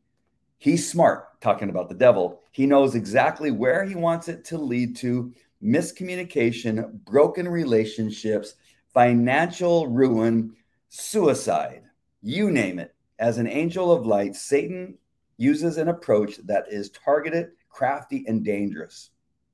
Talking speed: 125 wpm